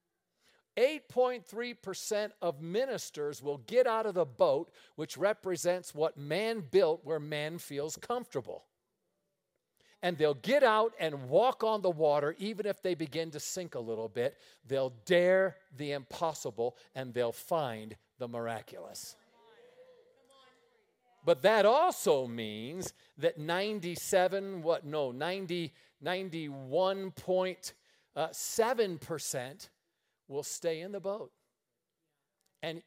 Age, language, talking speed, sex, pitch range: 50-69, English, 110 wpm, male, 155-245 Hz